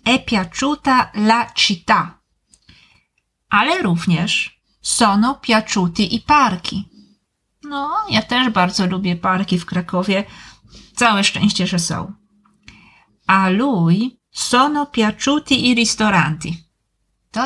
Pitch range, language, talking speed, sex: 180-225 Hz, Italian, 100 wpm, female